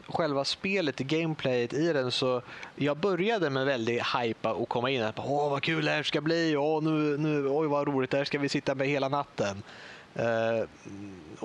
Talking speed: 185 wpm